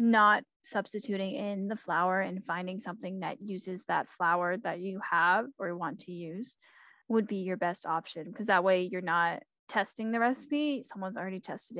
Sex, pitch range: female, 180-230 Hz